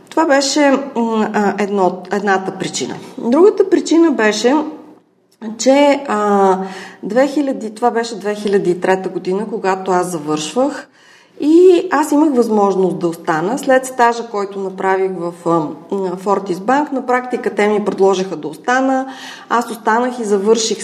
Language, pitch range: Bulgarian, 195-260 Hz